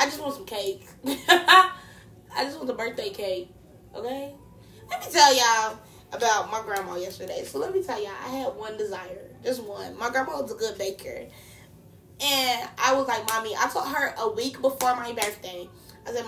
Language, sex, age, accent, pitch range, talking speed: English, female, 20-39, American, 200-280 Hz, 190 wpm